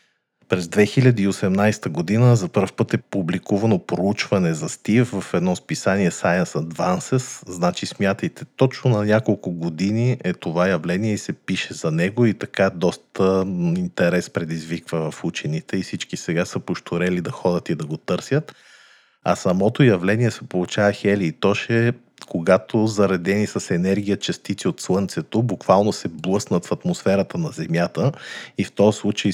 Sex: male